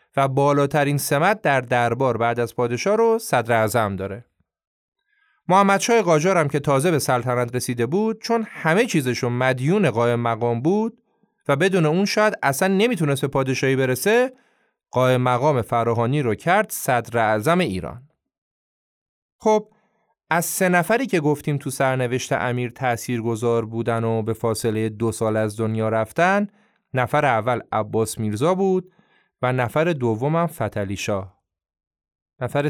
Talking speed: 140 wpm